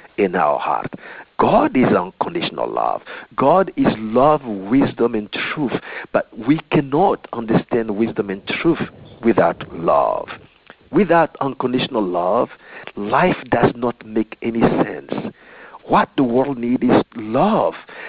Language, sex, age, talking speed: English, male, 50-69, 125 wpm